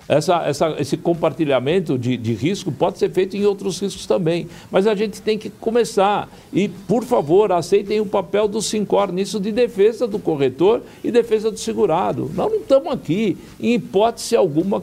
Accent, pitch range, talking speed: Brazilian, 155-205 Hz, 170 wpm